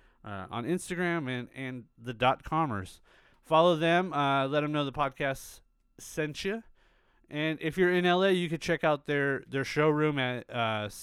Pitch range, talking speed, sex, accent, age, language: 110-145 Hz, 175 wpm, male, American, 30-49, English